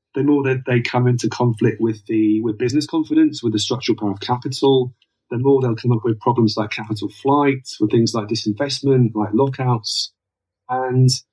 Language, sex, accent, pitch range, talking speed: English, male, British, 105-130 Hz, 185 wpm